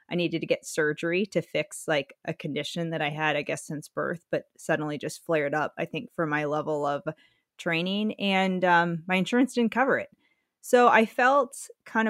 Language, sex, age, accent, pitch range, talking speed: English, female, 30-49, American, 165-200 Hz, 200 wpm